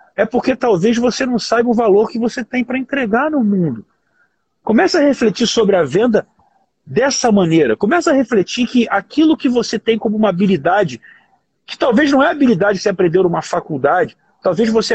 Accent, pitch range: Brazilian, 180-240 Hz